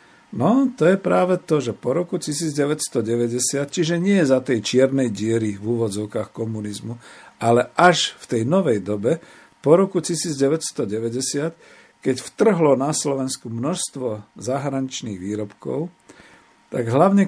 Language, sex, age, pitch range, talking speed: Slovak, male, 50-69, 115-150 Hz, 125 wpm